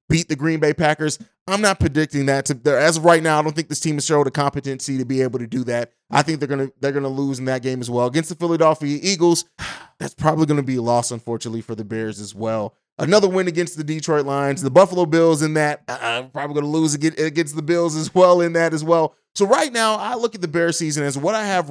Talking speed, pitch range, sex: 260 wpm, 140-185 Hz, male